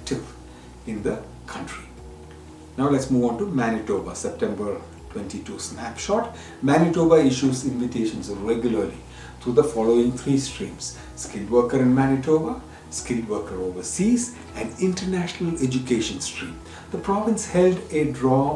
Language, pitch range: English, 100-155 Hz